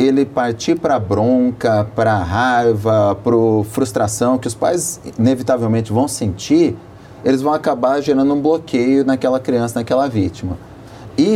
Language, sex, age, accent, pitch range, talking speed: Portuguese, male, 30-49, Brazilian, 110-145 Hz, 130 wpm